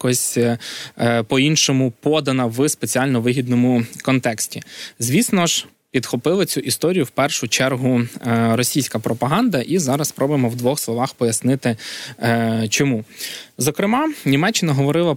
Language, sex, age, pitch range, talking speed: Ukrainian, male, 20-39, 120-150 Hz, 110 wpm